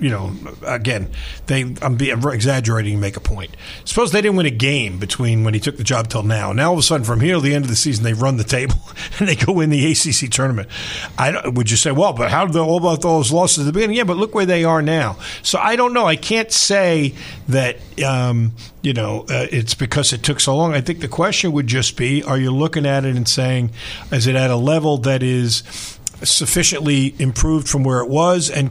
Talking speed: 255 wpm